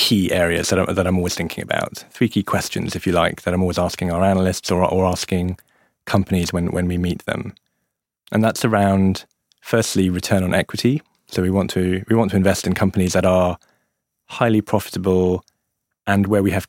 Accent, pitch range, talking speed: British, 90-100 Hz, 195 wpm